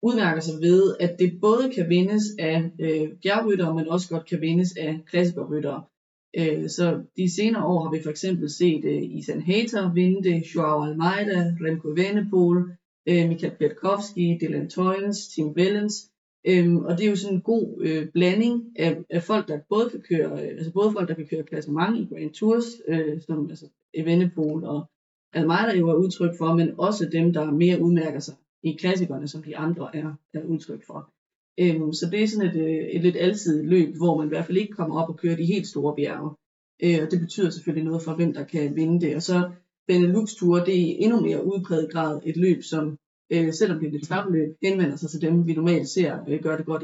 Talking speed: 205 wpm